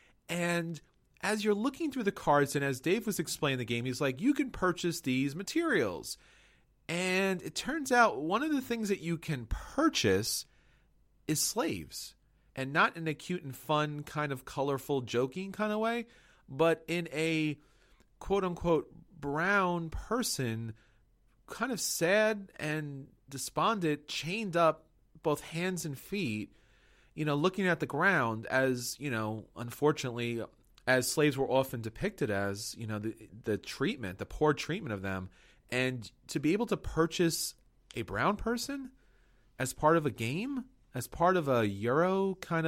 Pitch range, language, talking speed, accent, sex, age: 120-175 Hz, English, 155 wpm, American, male, 30-49